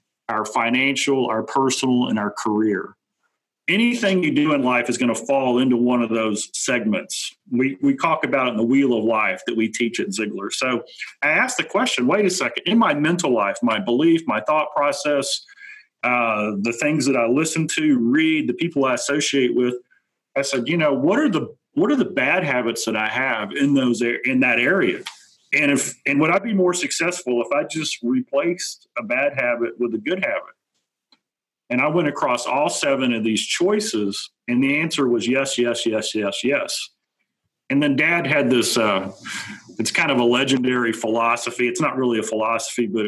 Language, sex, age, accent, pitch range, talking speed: English, male, 40-59, American, 115-165 Hz, 195 wpm